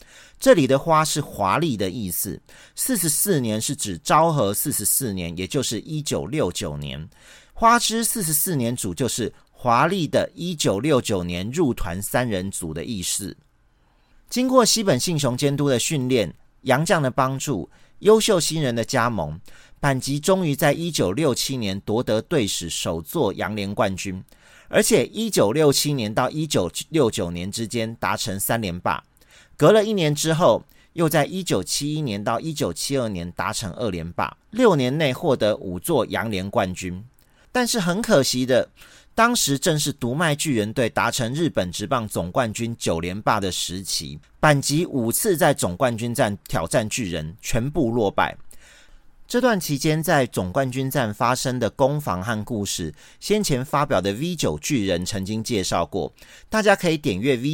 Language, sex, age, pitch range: Chinese, male, 40-59, 100-155 Hz